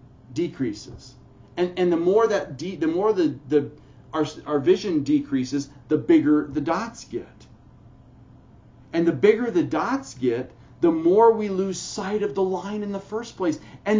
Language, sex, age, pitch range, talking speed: English, male, 40-59, 130-205 Hz, 165 wpm